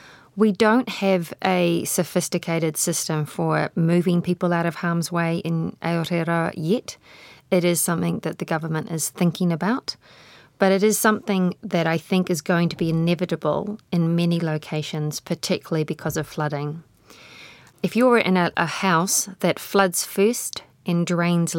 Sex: female